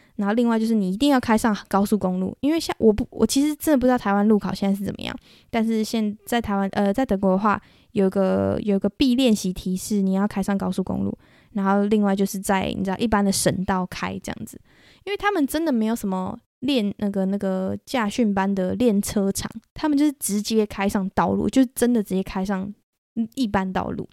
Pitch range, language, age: 195-265 Hz, Chinese, 10-29